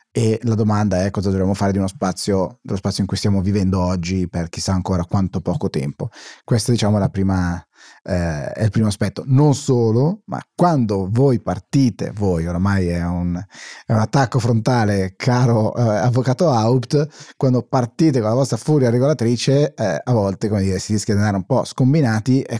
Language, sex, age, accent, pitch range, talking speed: Italian, male, 30-49, native, 100-130 Hz, 190 wpm